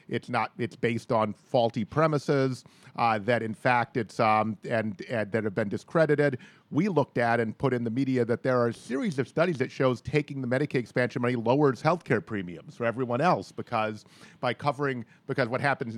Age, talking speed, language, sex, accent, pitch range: 40-59, 200 wpm, English, male, American, 115-150 Hz